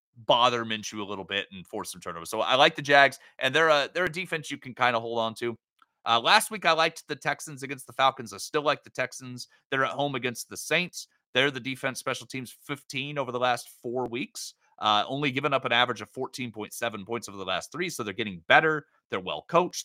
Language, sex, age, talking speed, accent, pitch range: English, male, 30-49, 240 wpm, American, 115-150 Hz